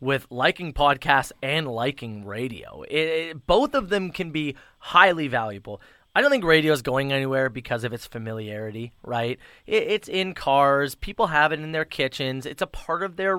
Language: English